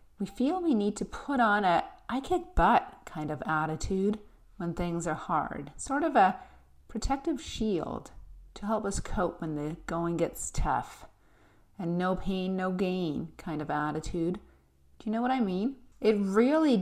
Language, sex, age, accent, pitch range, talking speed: English, female, 40-59, American, 160-230 Hz, 170 wpm